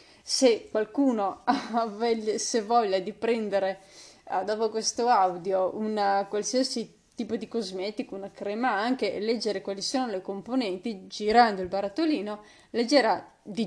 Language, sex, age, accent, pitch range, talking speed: Italian, female, 20-39, native, 195-235 Hz, 130 wpm